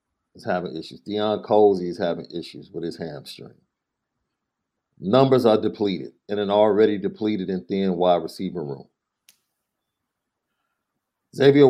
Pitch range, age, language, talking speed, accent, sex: 100-130 Hz, 40-59, English, 125 wpm, American, male